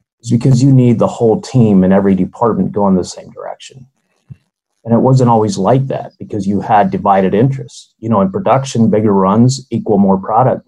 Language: English